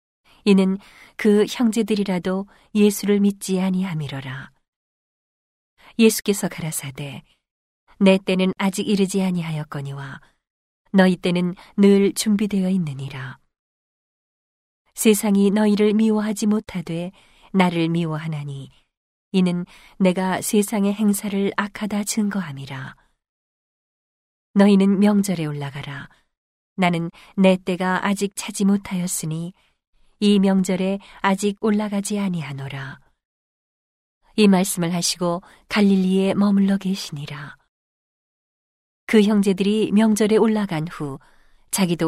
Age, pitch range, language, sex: 40-59, 165-205 Hz, Korean, female